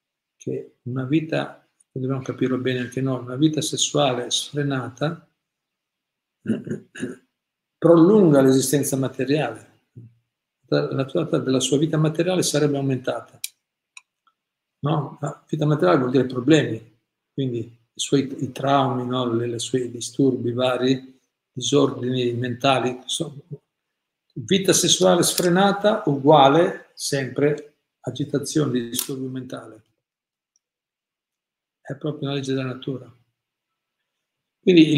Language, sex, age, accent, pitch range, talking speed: Italian, male, 50-69, native, 130-155 Hz, 105 wpm